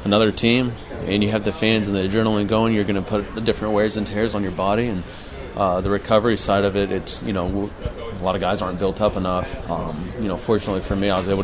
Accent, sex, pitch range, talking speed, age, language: American, male, 95-105 Hz, 260 wpm, 30-49, English